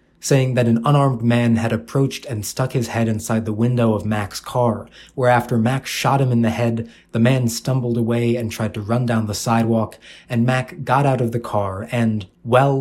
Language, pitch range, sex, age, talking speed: English, 110-125 Hz, male, 20-39, 205 wpm